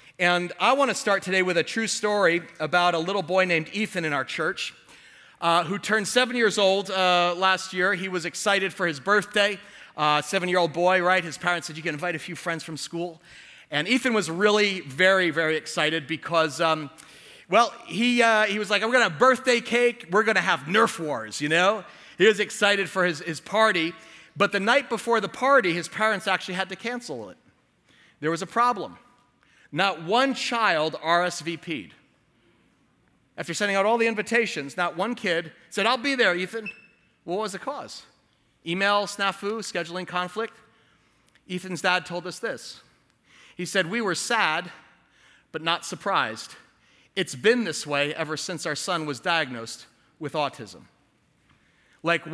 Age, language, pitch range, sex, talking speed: 30-49, English, 170-210 Hz, male, 175 wpm